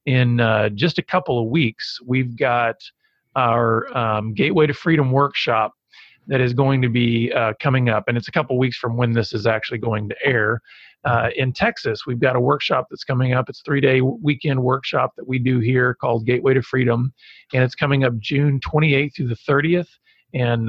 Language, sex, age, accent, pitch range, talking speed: English, male, 40-59, American, 120-140 Hz, 205 wpm